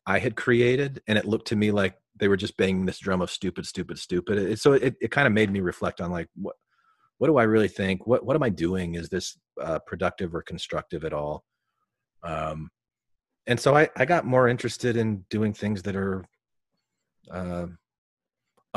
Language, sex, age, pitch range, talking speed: English, male, 40-59, 100-130 Hz, 205 wpm